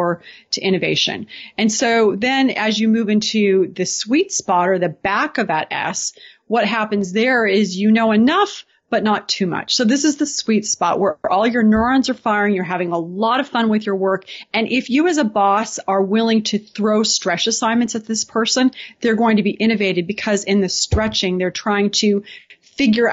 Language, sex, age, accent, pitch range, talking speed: English, female, 30-49, American, 185-225 Hz, 200 wpm